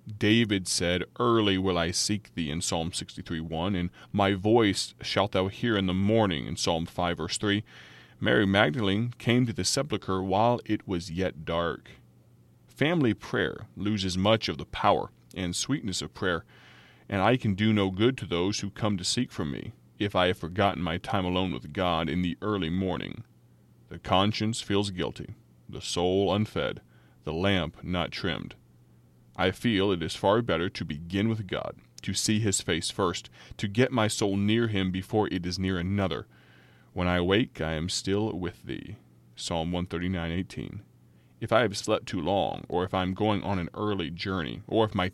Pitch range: 90-105 Hz